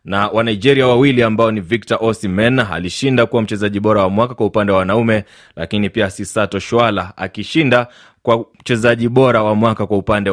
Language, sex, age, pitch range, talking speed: Swahili, male, 30-49, 105-130 Hz, 175 wpm